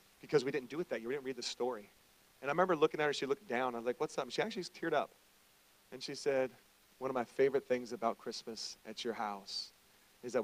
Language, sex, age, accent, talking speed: English, male, 40-59, American, 270 wpm